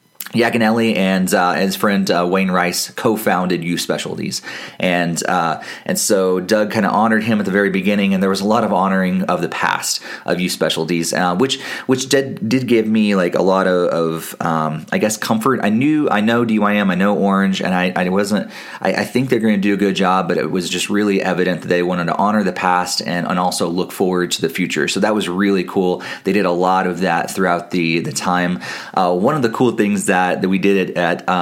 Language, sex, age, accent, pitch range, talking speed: English, male, 30-49, American, 90-100 Hz, 235 wpm